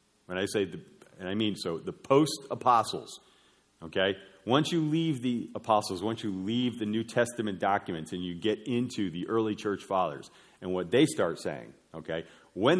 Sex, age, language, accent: male, 40-59, English, American